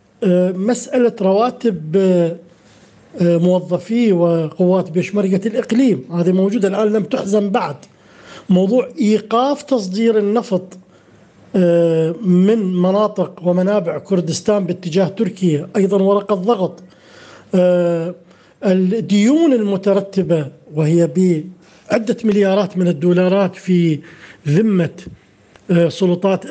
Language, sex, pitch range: Arabic, male, 180-220 Hz